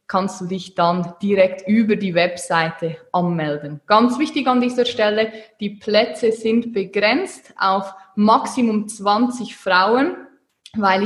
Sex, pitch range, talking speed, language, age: female, 190-240 Hz, 125 wpm, German, 20-39